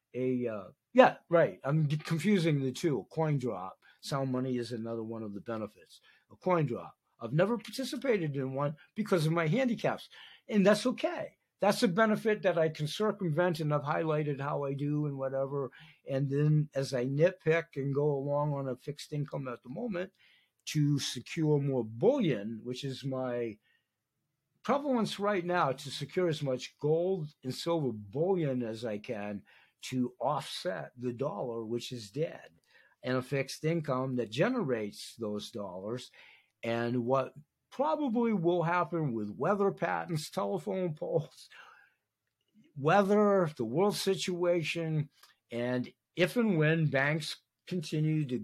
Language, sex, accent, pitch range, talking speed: English, male, American, 125-170 Hz, 145 wpm